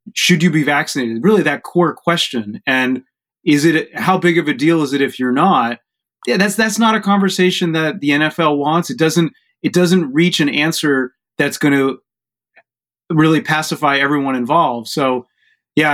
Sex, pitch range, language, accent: male, 135-170 Hz, English, American